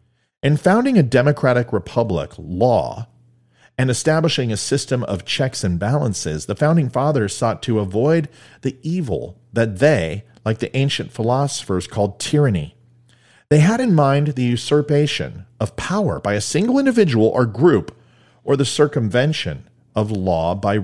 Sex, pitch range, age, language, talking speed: male, 105-150 Hz, 40-59, English, 145 wpm